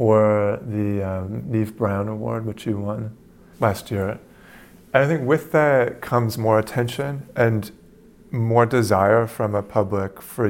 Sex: male